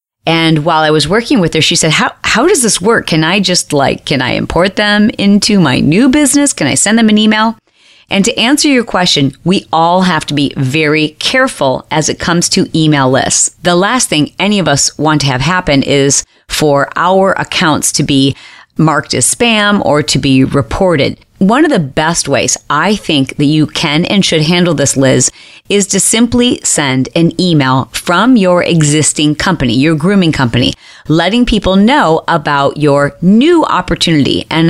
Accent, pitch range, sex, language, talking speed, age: American, 150-205 Hz, female, English, 190 wpm, 40-59